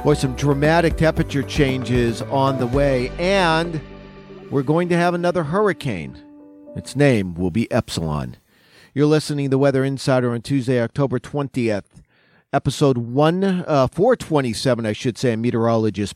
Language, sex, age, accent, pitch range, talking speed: English, male, 40-59, American, 125-150 Hz, 140 wpm